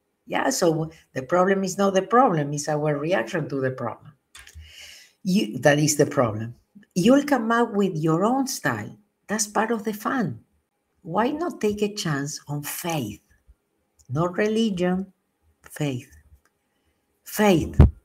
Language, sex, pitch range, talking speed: English, female, 150-215 Hz, 135 wpm